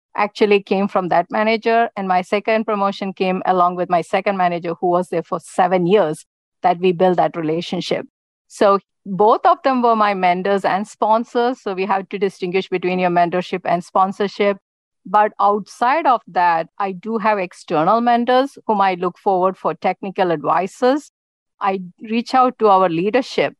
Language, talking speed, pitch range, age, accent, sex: English, 170 wpm, 185-225 Hz, 50-69, Indian, female